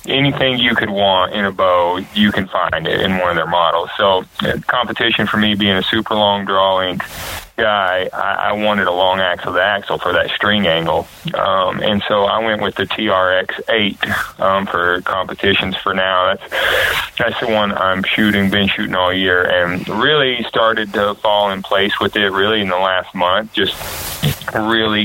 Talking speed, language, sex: 185 wpm, English, male